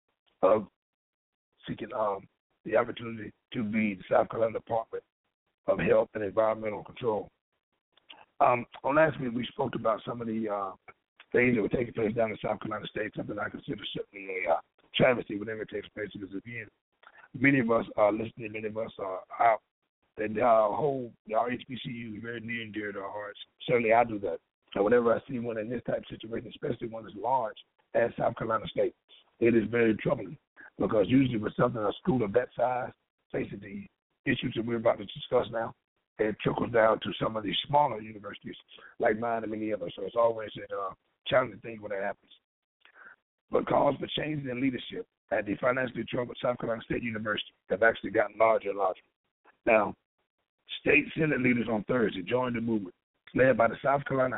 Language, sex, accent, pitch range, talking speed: English, male, American, 110-125 Hz, 195 wpm